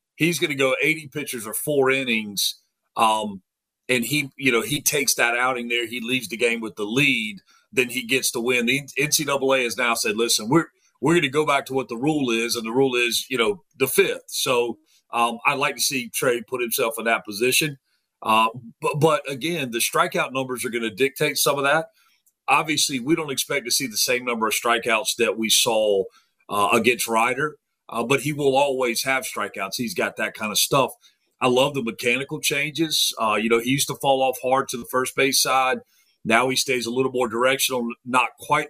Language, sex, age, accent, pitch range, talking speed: English, male, 40-59, American, 115-145 Hz, 215 wpm